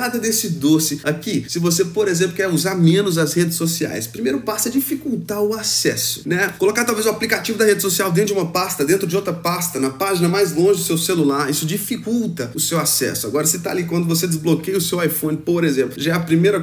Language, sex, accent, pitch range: Portuguese, male, Brazilian, 160-200 Hz